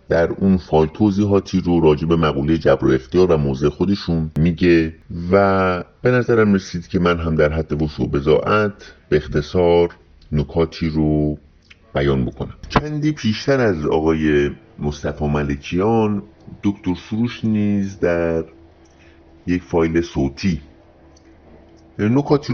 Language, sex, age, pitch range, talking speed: Persian, male, 50-69, 80-105 Hz, 115 wpm